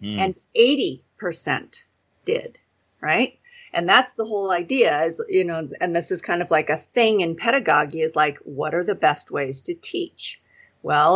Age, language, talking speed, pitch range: 40-59, English, 175 wpm, 165-225 Hz